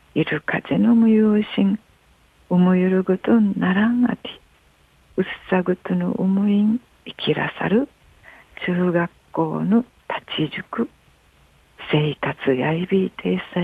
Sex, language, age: female, Japanese, 50-69